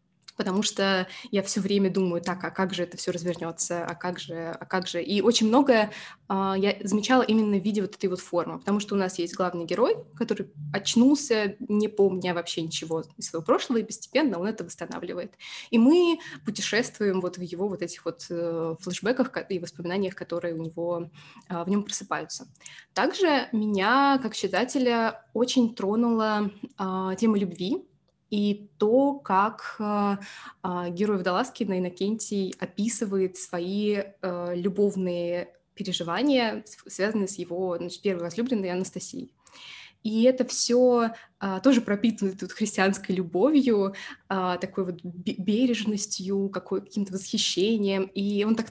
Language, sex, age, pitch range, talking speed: Russian, female, 20-39, 180-220 Hz, 145 wpm